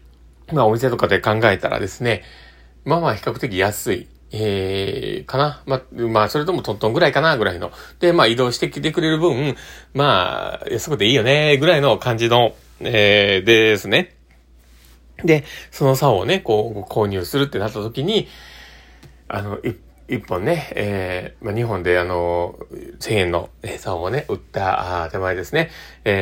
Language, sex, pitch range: Japanese, male, 95-130 Hz